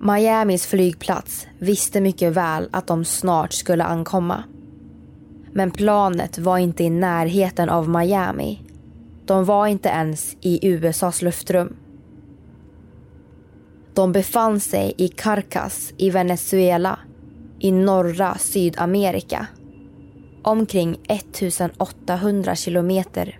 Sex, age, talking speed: female, 20-39, 95 wpm